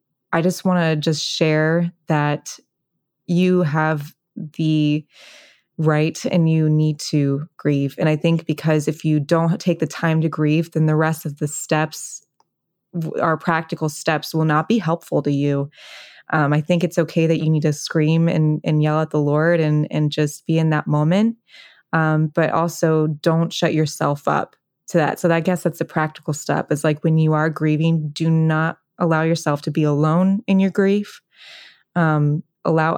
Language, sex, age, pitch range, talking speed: English, female, 20-39, 155-170 Hz, 180 wpm